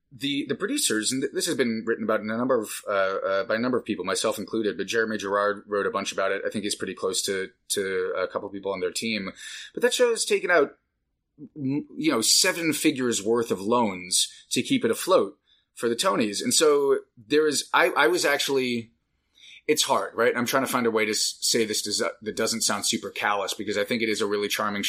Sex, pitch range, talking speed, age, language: male, 105-150 Hz, 235 wpm, 30-49, English